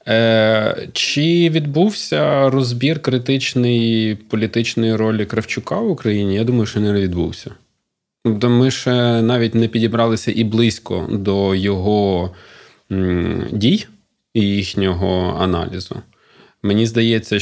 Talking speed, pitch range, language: 105 wpm, 95-115 Hz, Ukrainian